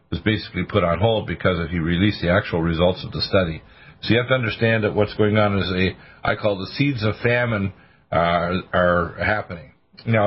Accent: American